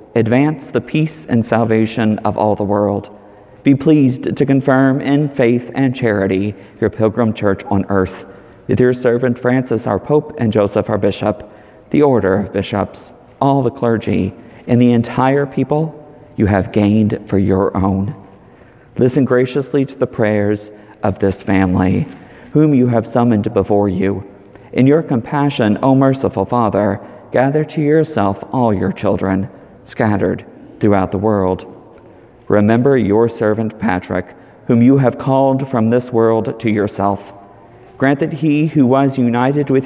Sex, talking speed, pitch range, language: male, 150 wpm, 100-130 Hz, English